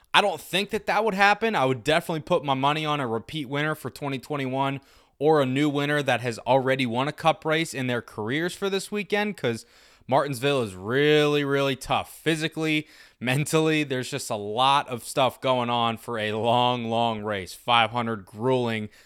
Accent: American